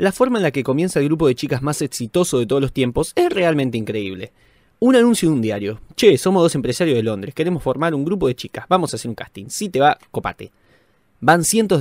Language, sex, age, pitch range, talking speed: Spanish, male, 20-39, 120-180 Hz, 240 wpm